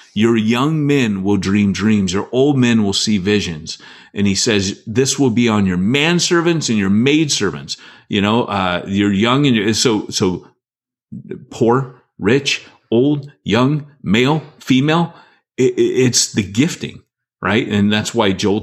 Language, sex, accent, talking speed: English, male, American, 155 wpm